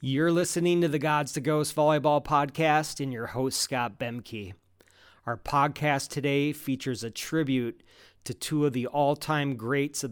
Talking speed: 165 wpm